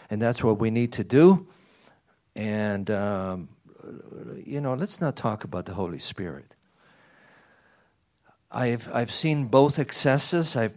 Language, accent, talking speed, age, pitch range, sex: English, American, 135 wpm, 50-69, 110-150 Hz, male